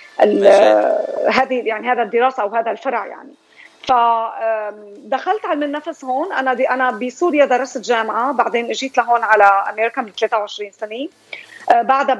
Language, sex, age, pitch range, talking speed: Arabic, female, 30-49, 220-280 Hz, 140 wpm